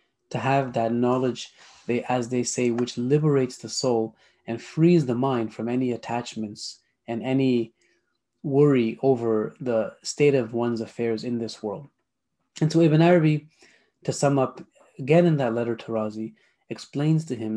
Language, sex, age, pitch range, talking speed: French, male, 30-49, 115-135 Hz, 160 wpm